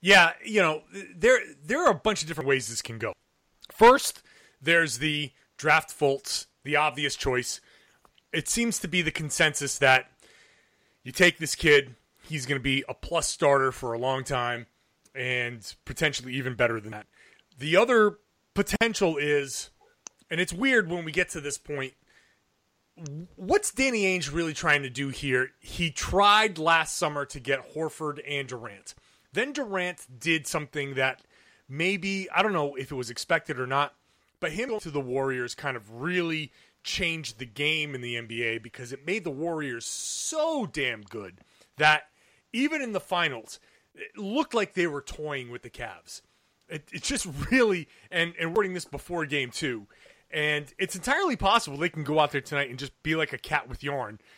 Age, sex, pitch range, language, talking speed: 30-49, male, 135-180 Hz, English, 180 wpm